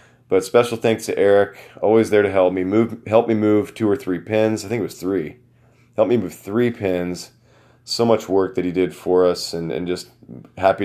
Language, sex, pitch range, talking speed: English, male, 90-105 Hz, 220 wpm